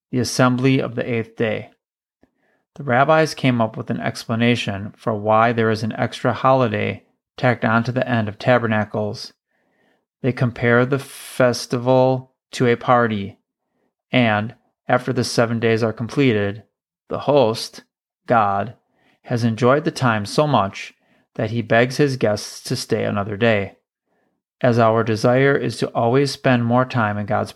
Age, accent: 30-49, American